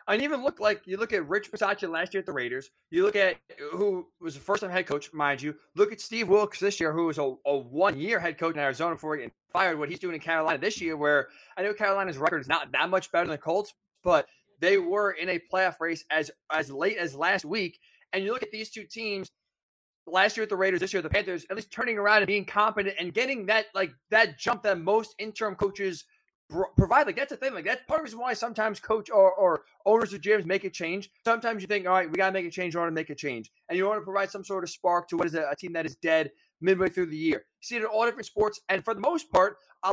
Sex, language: male, English